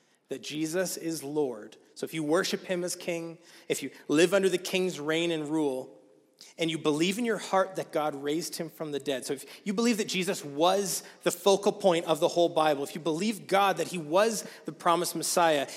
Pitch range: 160-210 Hz